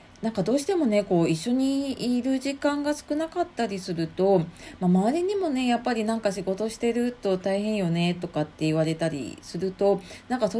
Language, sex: Japanese, female